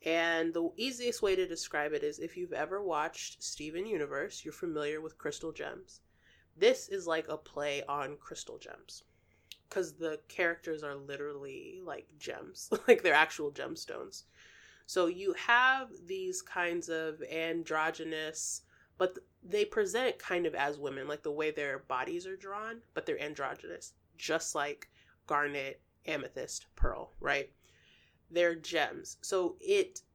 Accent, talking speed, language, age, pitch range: American, 145 wpm, English, 20-39, 155-245 Hz